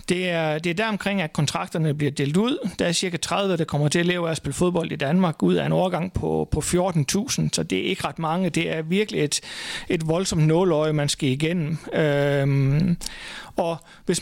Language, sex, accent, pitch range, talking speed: Danish, male, native, 160-195 Hz, 215 wpm